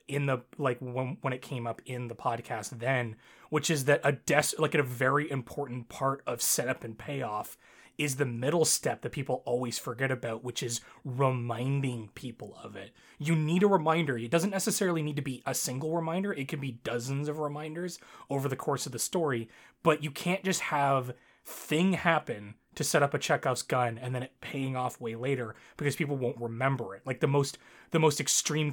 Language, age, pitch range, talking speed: English, 20-39, 125-155 Hz, 205 wpm